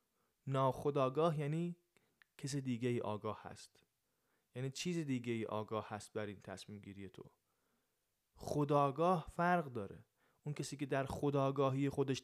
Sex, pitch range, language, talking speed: male, 135-175 Hz, Persian, 130 wpm